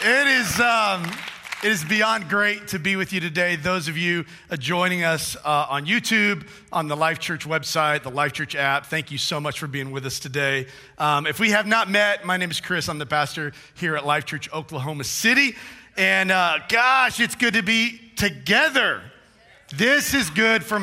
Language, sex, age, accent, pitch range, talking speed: English, male, 40-59, American, 150-195 Hz, 200 wpm